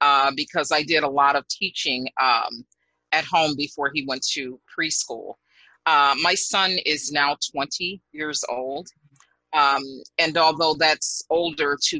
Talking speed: 150 wpm